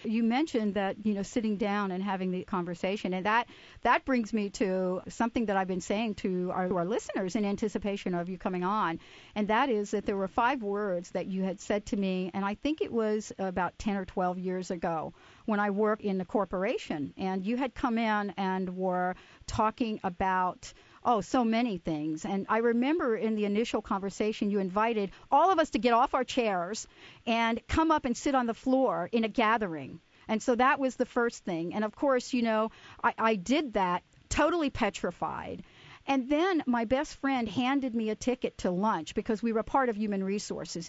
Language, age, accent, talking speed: English, 50-69, American, 210 wpm